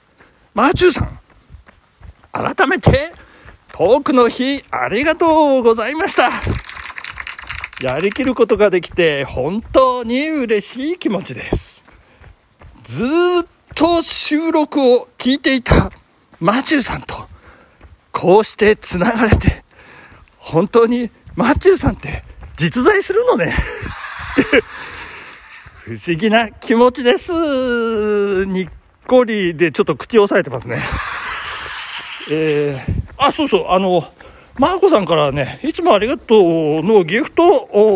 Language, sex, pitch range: Japanese, male, 195-310 Hz